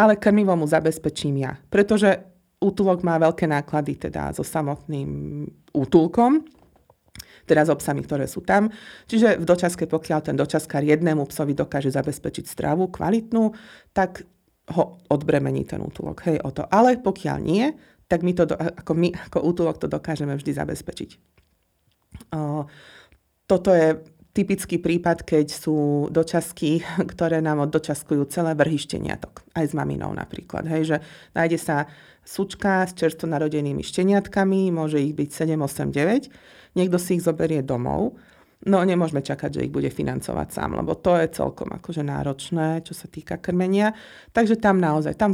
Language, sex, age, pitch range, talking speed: Slovak, female, 30-49, 150-185 Hz, 150 wpm